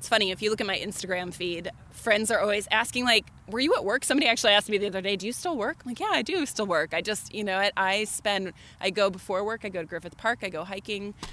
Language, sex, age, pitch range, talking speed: English, female, 20-39, 175-215 Hz, 285 wpm